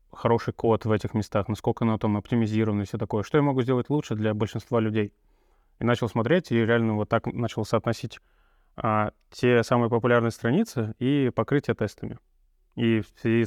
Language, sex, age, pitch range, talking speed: Russian, male, 20-39, 105-120 Hz, 180 wpm